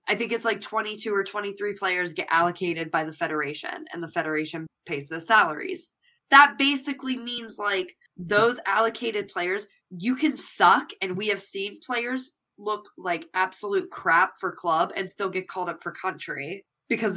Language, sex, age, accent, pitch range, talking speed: English, female, 20-39, American, 170-215 Hz, 170 wpm